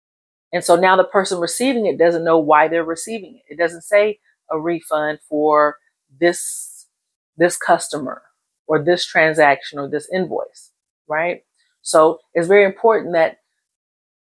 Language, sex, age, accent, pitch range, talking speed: English, female, 40-59, American, 160-195 Hz, 145 wpm